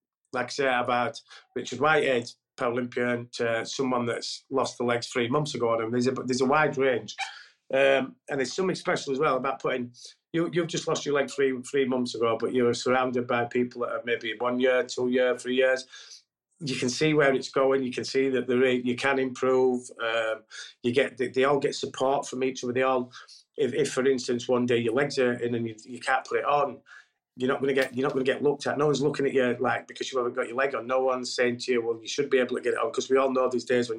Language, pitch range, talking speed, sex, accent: English, 120-135 Hz, 260 wpm, male, British